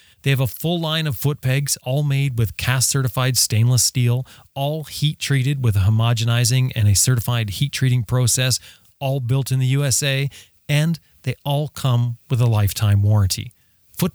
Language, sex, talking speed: English, male, 175 wpm